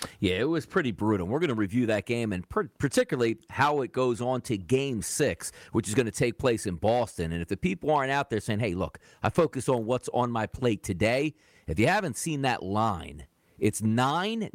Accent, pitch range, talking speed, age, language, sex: American, 105-155 Hz, 225 wpm, 40-59, English, male